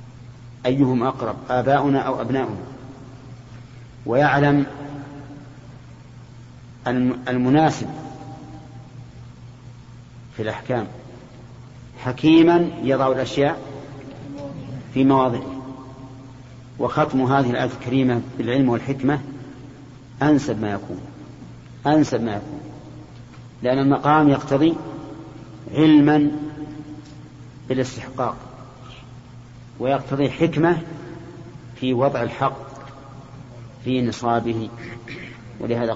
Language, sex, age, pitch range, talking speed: Arabic, male, 50-69, 120-140 Hz, 65 wpm